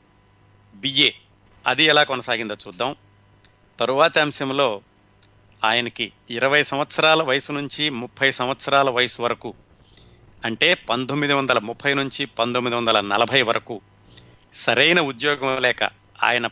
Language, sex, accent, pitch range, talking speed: Telugu, male, native, 105-140 Hz, 105 wpm